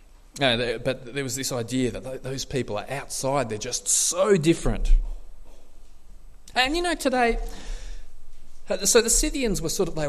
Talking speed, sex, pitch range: 150 wpm, male, 130-190 Hz